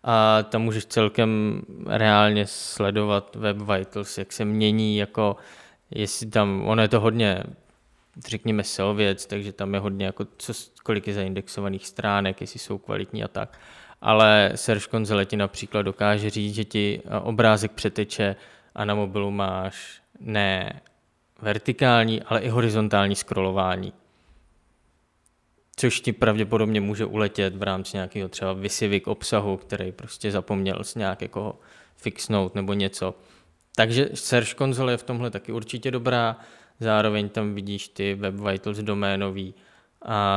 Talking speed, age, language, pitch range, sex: 140 wpm, 20-39, Czech, 100-110 Hz, male